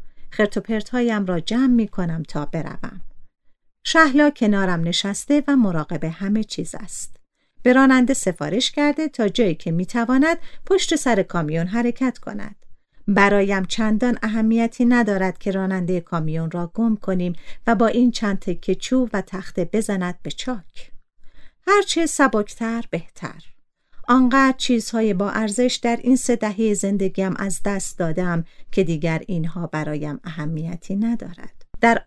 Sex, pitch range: female, 175-230 Hz